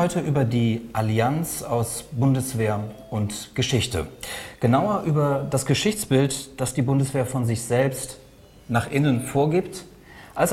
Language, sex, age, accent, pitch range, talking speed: German, male, 40-59, German, 115-150 Hz, 120 wpm